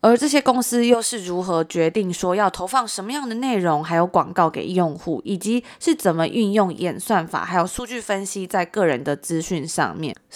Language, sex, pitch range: Chinese, female, 170-215 Hz